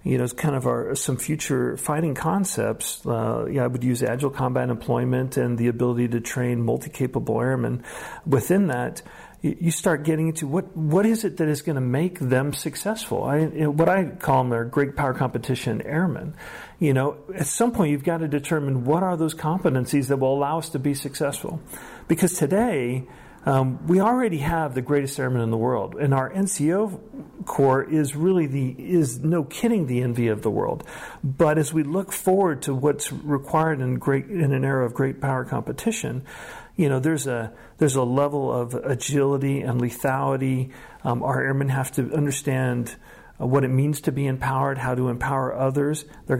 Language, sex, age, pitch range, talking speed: English, male, 40-59, 130-160 Hz, 195 wpm